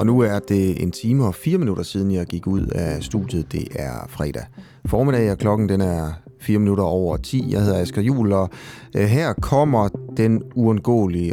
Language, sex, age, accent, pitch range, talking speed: Danish, male, 30-49, native, 100-130 Hz, 190 wpm